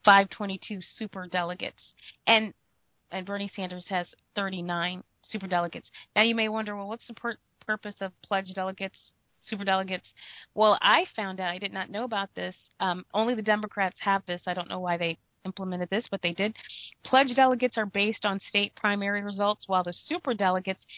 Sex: female